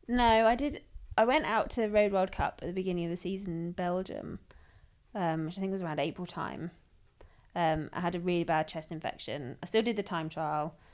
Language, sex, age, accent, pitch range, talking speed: English, female, 20-39, British, 140-180 Hz, 225 wpm